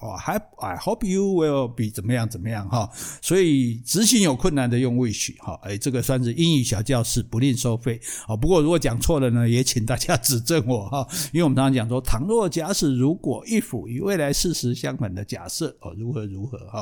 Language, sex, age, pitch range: Chinese, male, 60-79, 115-160 Hz